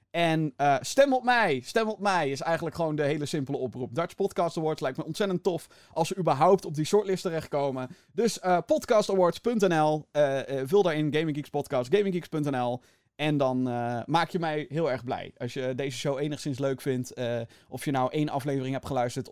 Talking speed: 195 wpm